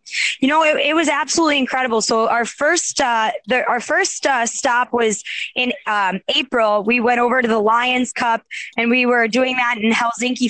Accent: American